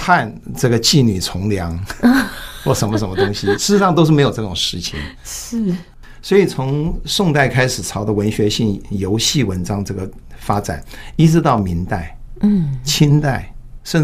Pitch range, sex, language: 95-135 Hz, male, Chinese